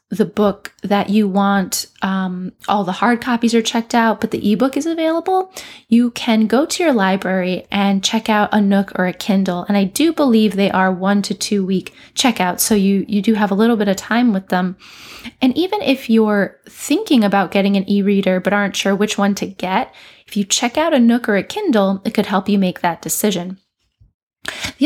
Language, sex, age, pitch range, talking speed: English, female, 20-39, 195-230 Hz, 210 wpm